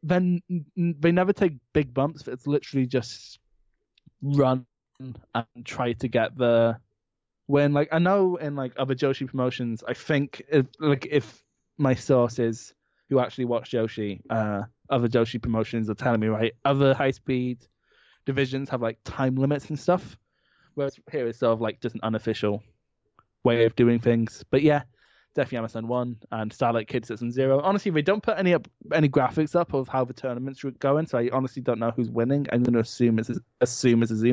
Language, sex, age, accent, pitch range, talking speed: English, male, 20-39, British, 115-140 Hz, 185 wpm